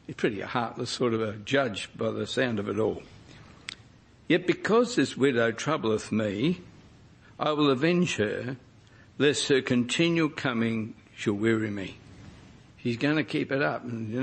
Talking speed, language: 155 wpm, English